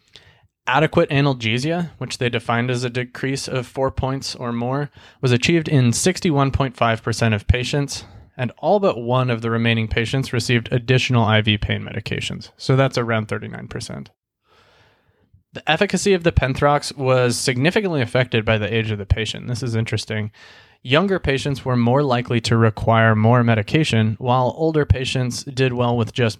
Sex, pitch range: male, 110-135 Hz